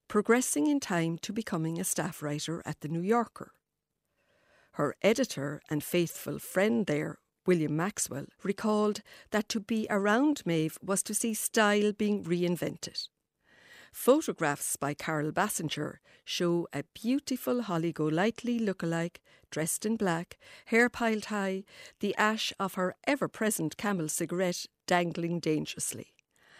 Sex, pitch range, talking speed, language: female, 165-215 Hz, 130 wpm, English